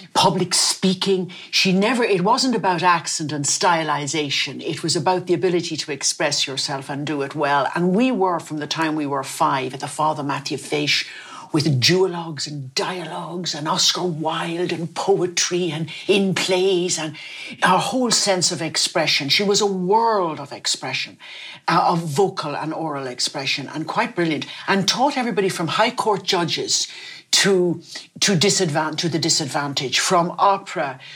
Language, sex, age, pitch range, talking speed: English, female, 60-79, 150-190 Hz, 160 wpm